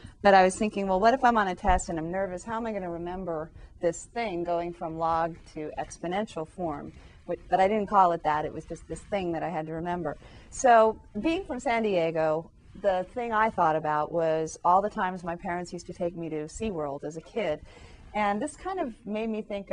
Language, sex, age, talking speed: English, female, 30-49, 235 wpm